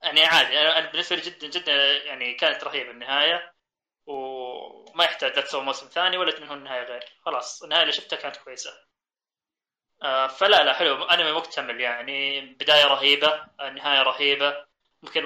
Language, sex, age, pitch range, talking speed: Arabic, male, 20-39, 135-180 Hz, 160 wpm